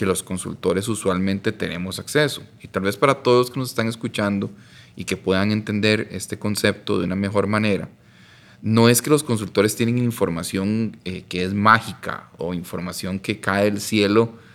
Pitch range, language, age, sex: 95-115 Hz, Spanish, 30-49, male